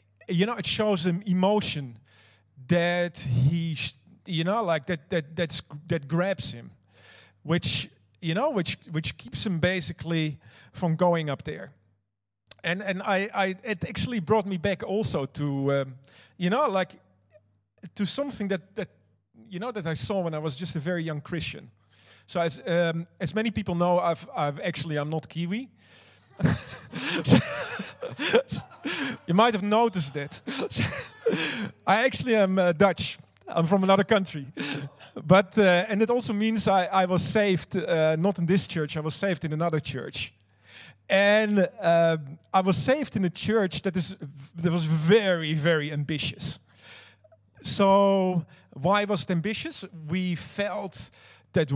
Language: English